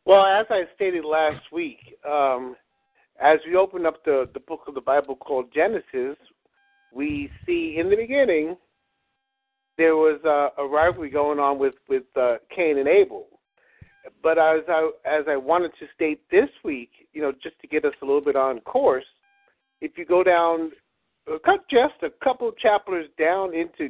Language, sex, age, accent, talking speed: English, male, 50-69, American, 175 wpm